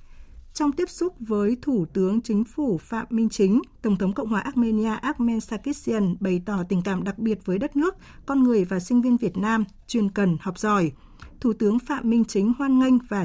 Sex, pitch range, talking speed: female, 200-245 Hz, 210 wpm